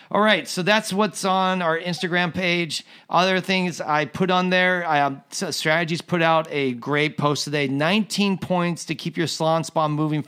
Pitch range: 140-175 Hz